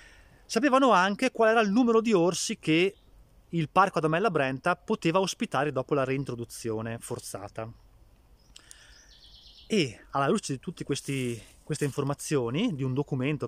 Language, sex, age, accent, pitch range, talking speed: Italian, male, 30-49, native, 115-175 Hz, 125 wpm